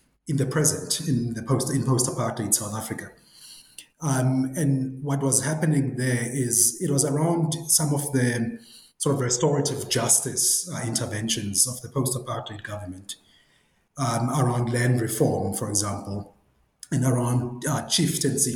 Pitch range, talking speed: 115-140 Hz, 140 wpm